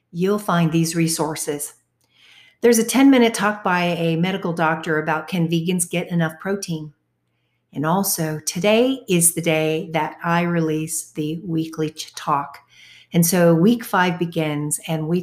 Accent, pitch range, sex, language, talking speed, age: American, 165-195 Hz, female, English, 150 wpm, 50-69